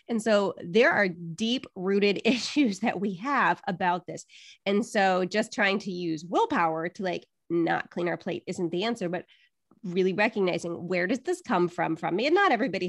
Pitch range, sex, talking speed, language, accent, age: 180-225 Hz, female, 190 wpm, English, American, 30-49